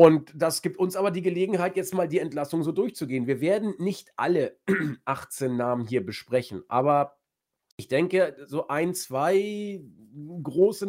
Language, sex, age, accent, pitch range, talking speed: German, male, 40-59, German, 140-195 Hz, 155 wpm